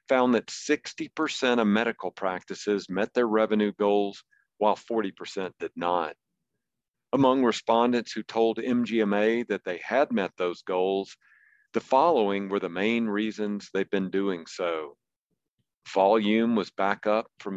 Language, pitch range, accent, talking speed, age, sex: English, 95-115 Hz, American, 135 wpm, 50-69, male